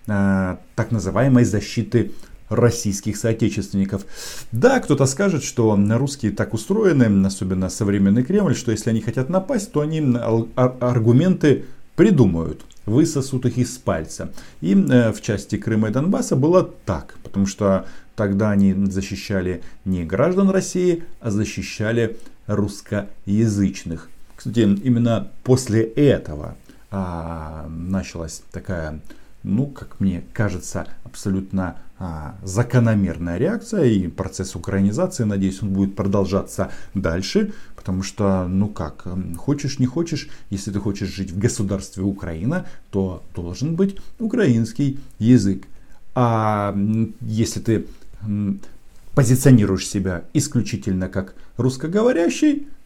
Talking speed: 110 wpm